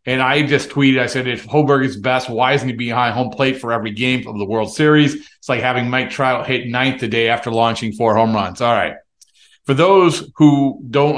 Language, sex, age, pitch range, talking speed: English, male, 40-59, 120-155 Hz, 230 wpm